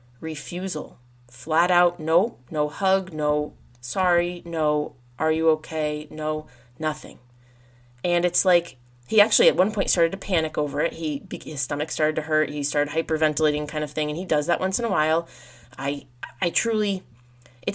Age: 30-49